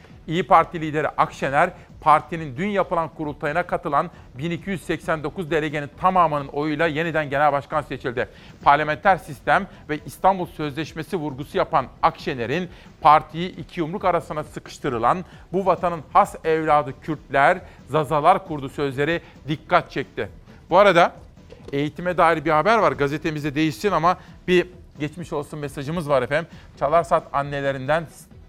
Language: Turkish